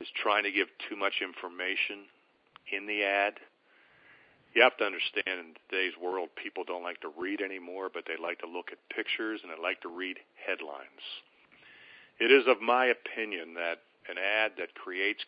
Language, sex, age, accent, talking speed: English, male, 50-69, American, 180 wpm